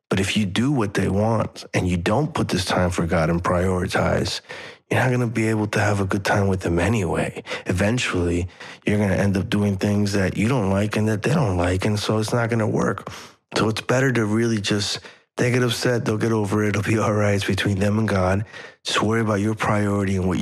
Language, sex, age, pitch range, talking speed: English, male, 30-49, 95-105 Hz, 245 wpm